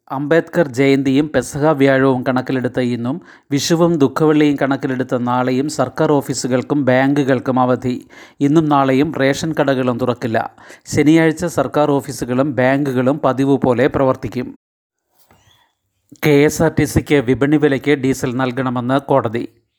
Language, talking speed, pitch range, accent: Malayalam, 95 wpm, 130-145 Hz, native